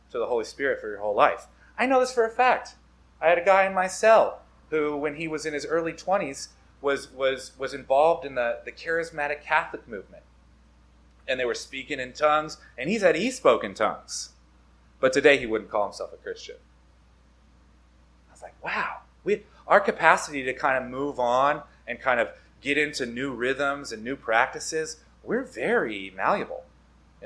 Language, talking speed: English, 190 wpm